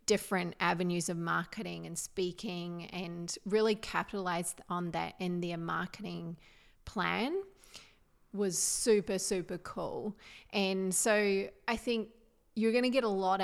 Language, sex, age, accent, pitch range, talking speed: English, female, 30-49, Australian, 175-210 Hz, 130 wpm